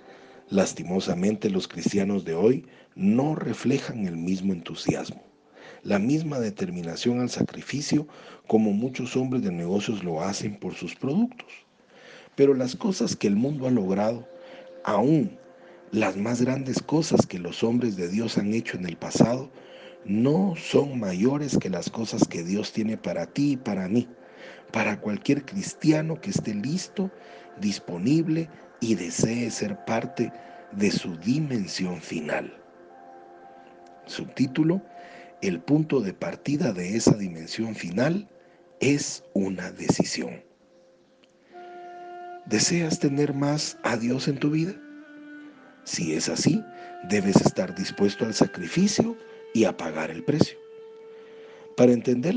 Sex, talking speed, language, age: male, 130 wpm, Spanish, 40-59